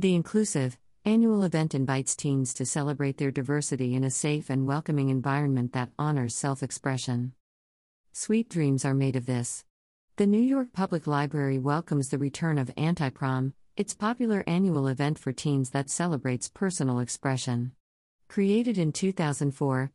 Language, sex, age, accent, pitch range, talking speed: English, female, 50-69, American, 130-165 Hz, 150 wpm